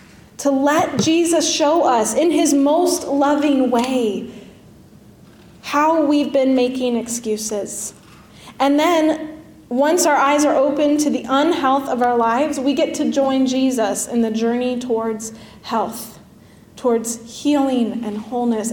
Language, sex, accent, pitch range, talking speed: English, female, American, 240-300 Hz, 135 wpm